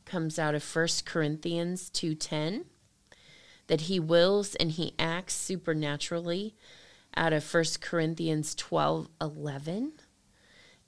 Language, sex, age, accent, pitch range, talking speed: English, female, 20-39, American, 150-170 Hz, 100 wpm